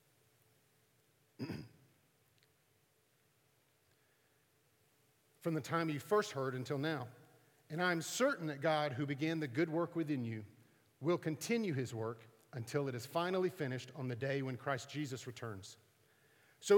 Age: 40-59